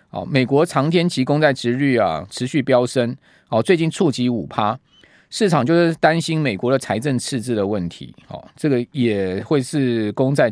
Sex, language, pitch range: male, Chinese, 120-170 Hz